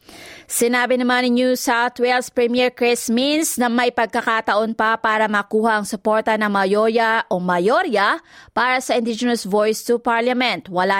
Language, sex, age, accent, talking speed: Filipino, female, 20-39, native, 155 wpm